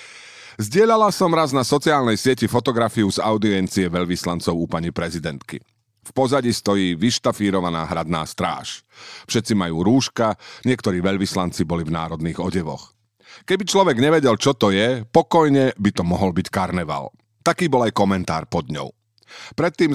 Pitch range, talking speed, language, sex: 90-125 Hz, 140 wpm, Slovak, male